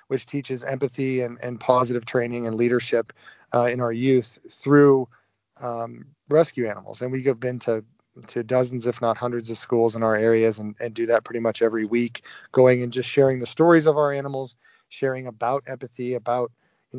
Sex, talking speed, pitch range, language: male, 190 wpm, 115-135 Hz, English